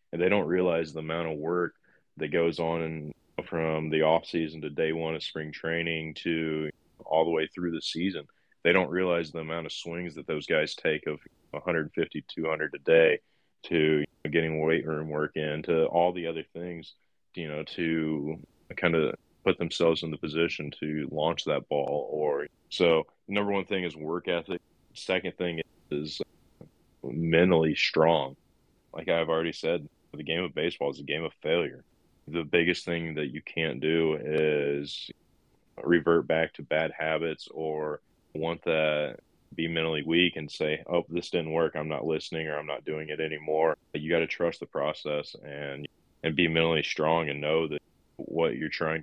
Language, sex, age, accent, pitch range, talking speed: English, male, 20-39, American, 75-85 Hz, 180 wpm